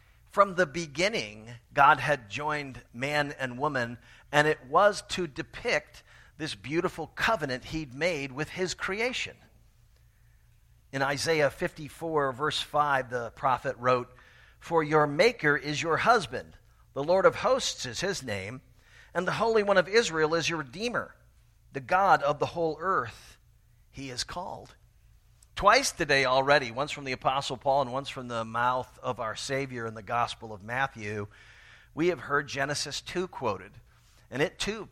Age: 50-69